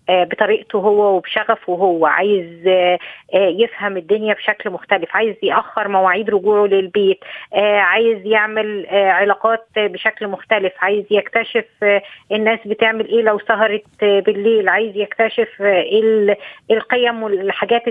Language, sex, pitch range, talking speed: Arabic, female, 205-235 Hz, 105 wpm